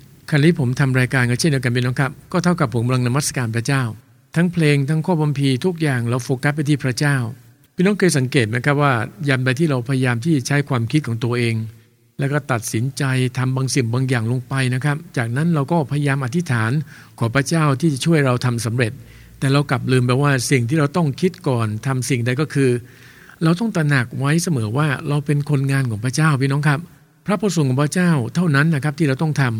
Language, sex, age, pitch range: English, male, 60-79, 130-155 Hz